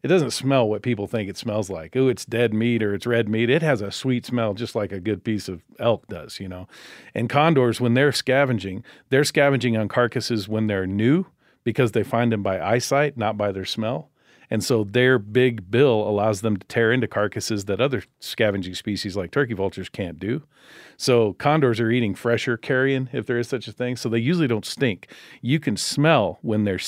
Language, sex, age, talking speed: English, male, 40-59, 215 wpm